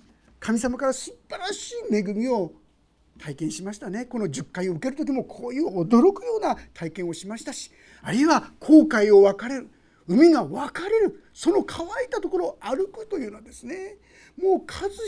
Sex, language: male, Japanese